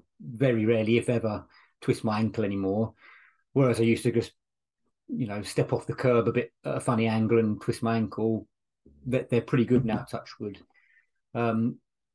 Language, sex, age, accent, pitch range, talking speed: English, male, 30-49, British, 115-140 Hz, 185 wpm